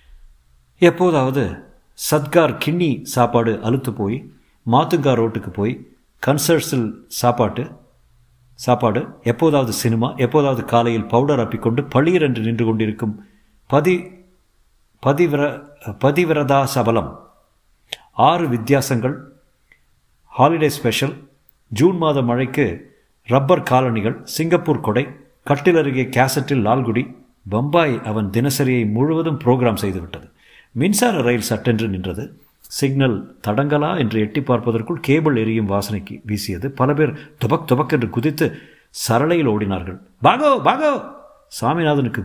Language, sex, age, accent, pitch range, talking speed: Tamil, male, 50-69, native, 110-150 Hz, 90 wpm